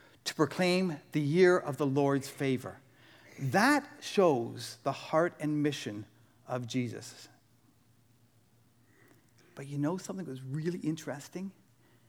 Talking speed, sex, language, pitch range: 120 wpm, male, English, 120-175 Hz